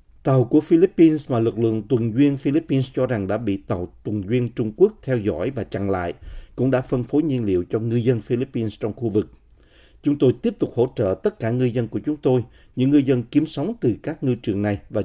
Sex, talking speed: male, 240 wpm